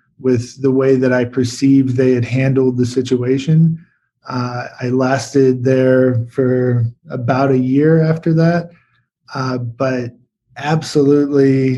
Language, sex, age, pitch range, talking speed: English, male, 20-39, 125-140 Hz, 120 wpm